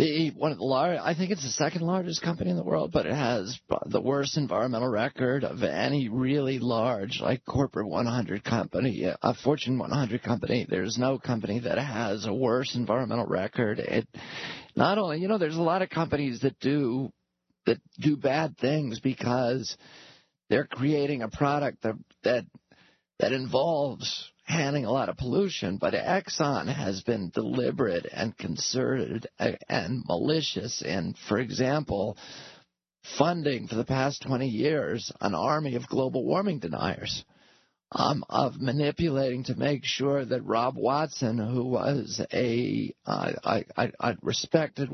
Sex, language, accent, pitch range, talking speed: male, English, American, 120-150 Hz, 150 wpm